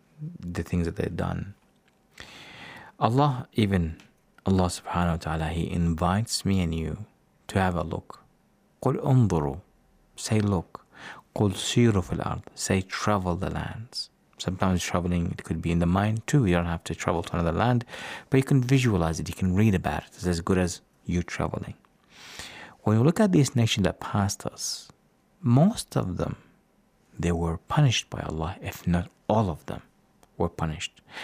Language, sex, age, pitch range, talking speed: English, male, 50-69, 85-115 Hz, 170 wpm